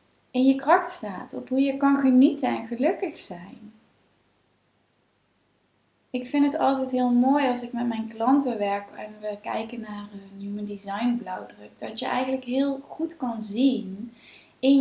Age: 20-39